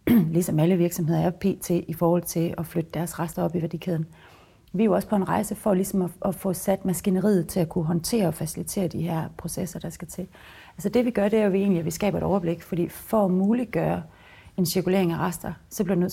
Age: 30-49